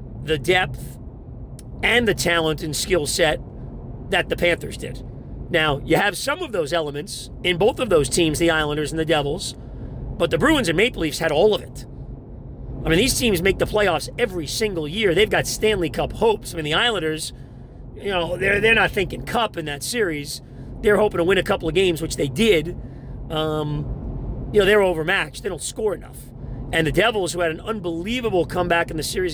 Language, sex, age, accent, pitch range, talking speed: English, male, 40-59, American, 145-190 Hz, 205 wpm